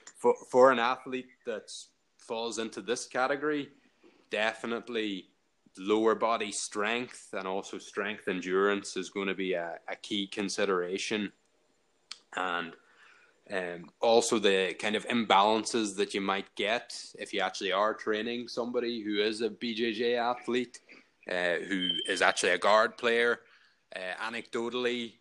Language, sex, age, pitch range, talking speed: English, male, 20-39, 95-120 Hz, 135 wpm